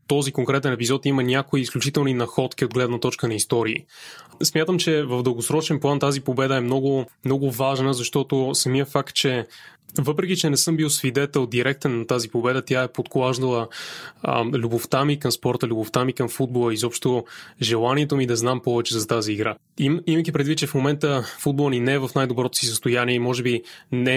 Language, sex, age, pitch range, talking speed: Bulgarian, male, 20-39, 120-140 Hz, 190 wpm